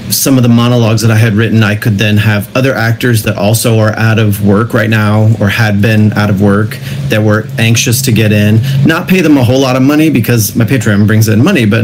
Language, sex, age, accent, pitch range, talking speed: English, male, 30-49, American, 105-120 Hz, 250 wpm